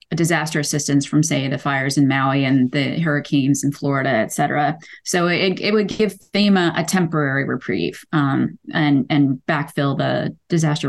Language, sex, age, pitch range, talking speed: English, female, 20-39, 145-180 Hz, 165 wpm